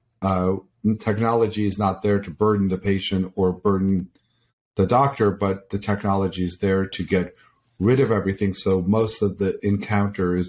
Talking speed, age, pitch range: 165 wpm, 50-69, 95-110 Hz